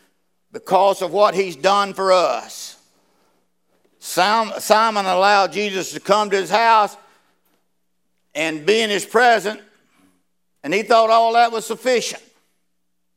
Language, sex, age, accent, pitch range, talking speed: English, male, 60-79, American, 150-215 Hz, 125 wpm